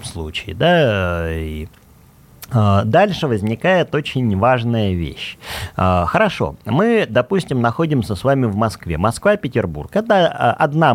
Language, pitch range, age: Russian, 100-155 Hz, 30-49